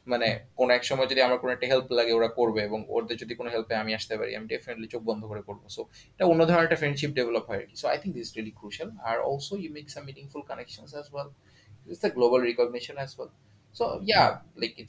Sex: male